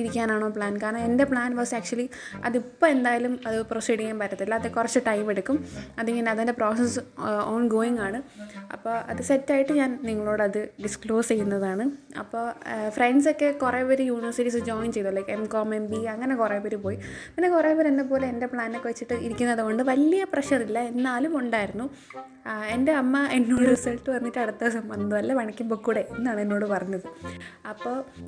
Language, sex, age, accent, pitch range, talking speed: Malayalam, female, 20-39, native, 220-265 Hz, 155 wpm